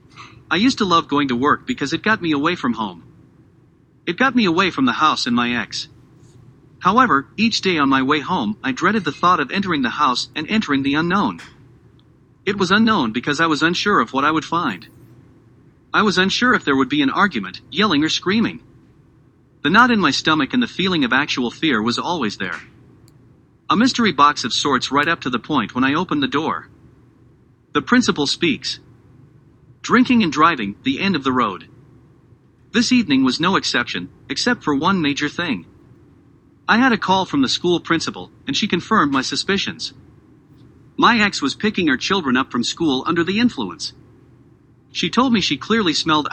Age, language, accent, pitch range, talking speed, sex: 40-59, English, American, 135-210 Hz, 190 wpm, male